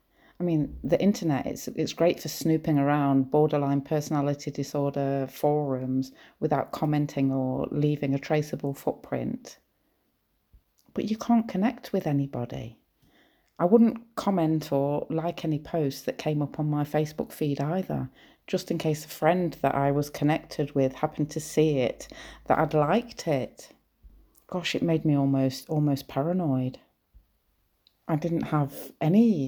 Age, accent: 40-59, British